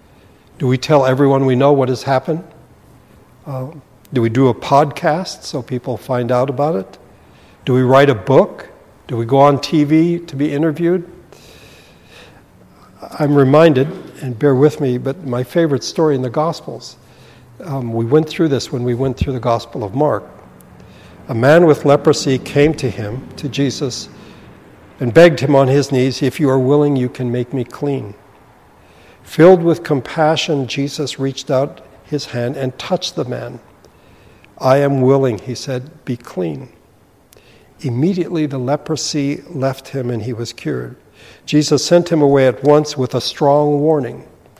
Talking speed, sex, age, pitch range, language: 165 wpm, male, 60-79, 125-150 Hz, English